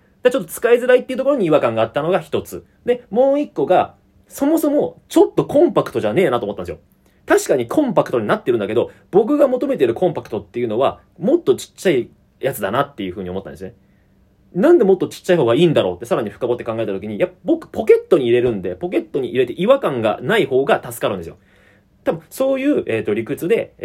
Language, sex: Japanese, male